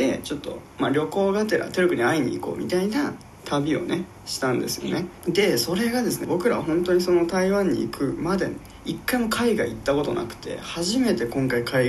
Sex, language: male, Japanese